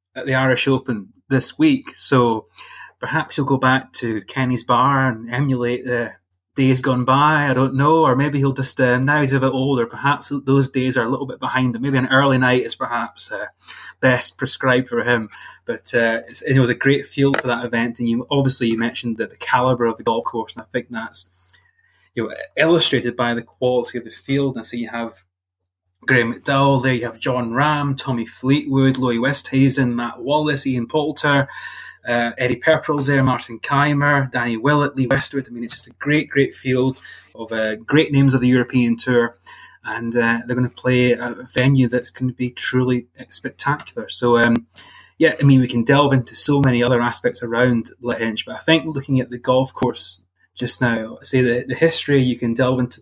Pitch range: 120-135 Hz